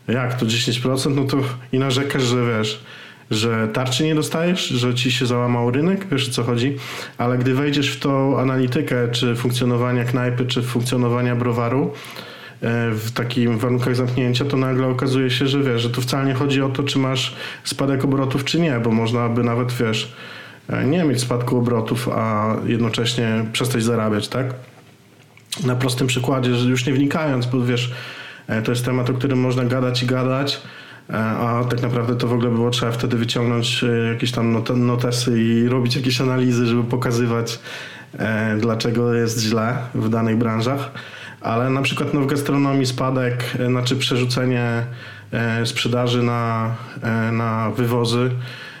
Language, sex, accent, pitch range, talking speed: Polish, male, native, 120-130 Hz, 155 wpm